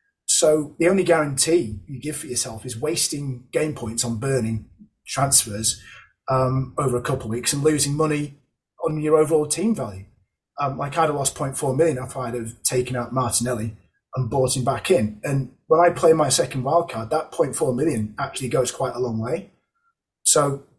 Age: 30-49